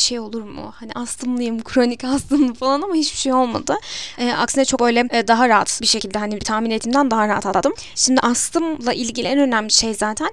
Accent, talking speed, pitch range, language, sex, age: native, 205 wpm, 225-260 Hz, Turkish, female, 10-29